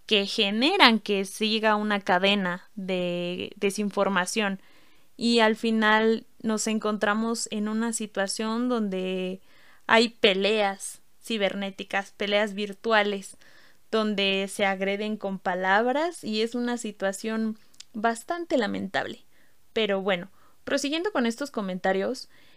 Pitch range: 205-245 Hz